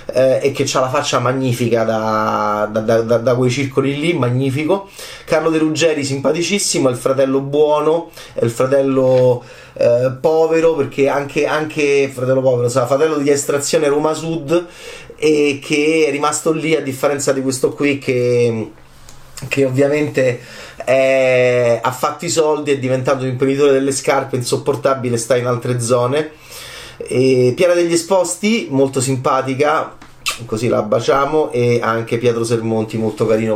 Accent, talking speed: native, 145 wpm